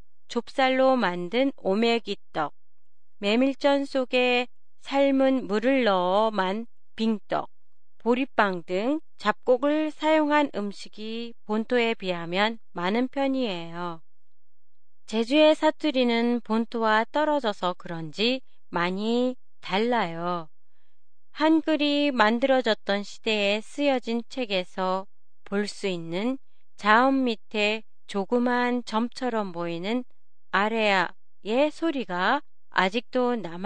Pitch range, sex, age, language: 195-275 Hz, female, 30-49, Japanese